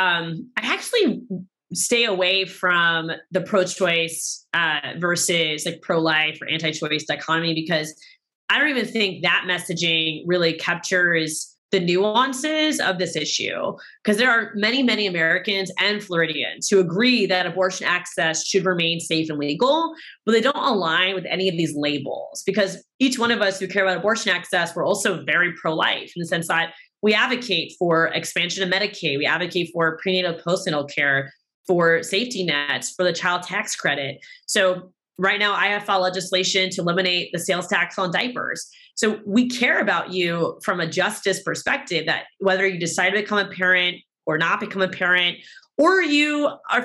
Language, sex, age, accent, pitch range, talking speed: English, female, 20-39, American, 170-205 Hz, 170 wpm